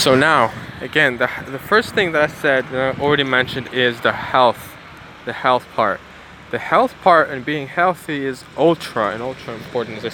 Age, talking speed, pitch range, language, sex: 20-39, 195 wpm, 130-160 Hz, English, male